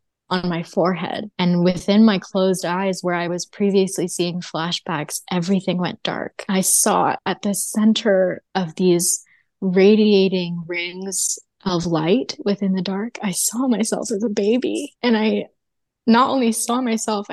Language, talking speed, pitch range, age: English, 150 wpm, 190-240 Hz, 20-39